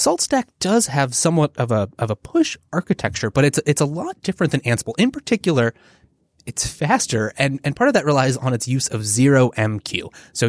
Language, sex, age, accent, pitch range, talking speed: English, male, 20-39, American, 115-155 Hz, 200 wpm